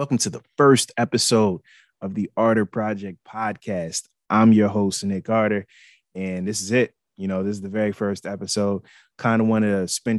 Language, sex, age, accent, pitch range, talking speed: English, male, 20-39, American, 95-115 Hz, 190 wpm